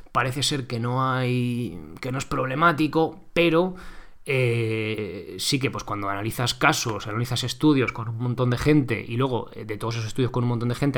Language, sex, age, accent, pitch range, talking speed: Spanish, male, 20-39, Spanish, 115-140 Hz, 190 wpm